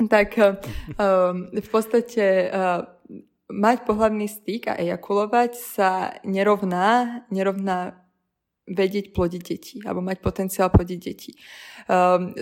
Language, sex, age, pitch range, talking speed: Slovak, female, 20-39, 185-210 Hz, 105 wpm